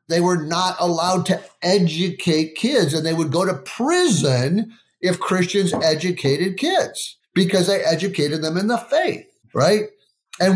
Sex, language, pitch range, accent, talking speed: male, English, 160-225 Hz, American, 150 wpm